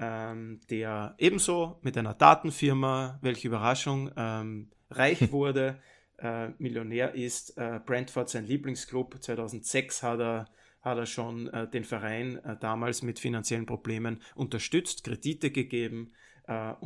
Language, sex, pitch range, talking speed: German, male, 115-130 Hz, 130 wpm